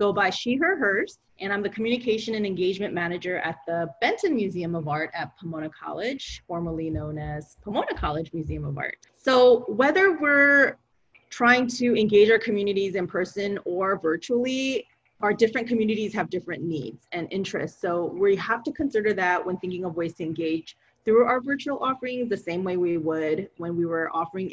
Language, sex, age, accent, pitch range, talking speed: English, female, 30-49, American, 180-235 Hz, 180 wpm